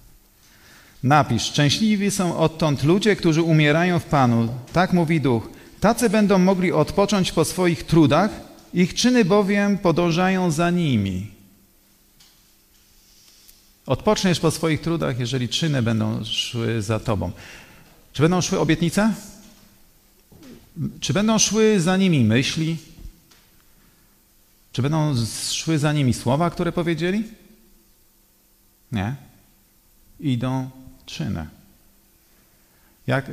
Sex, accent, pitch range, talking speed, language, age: male, native, 110-165 Hz, 100 wpm, Polish, 40-59